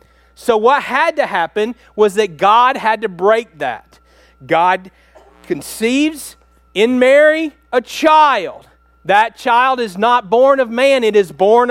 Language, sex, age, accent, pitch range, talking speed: English, male, 40-59, American, 185-245 Hz, 145 wpm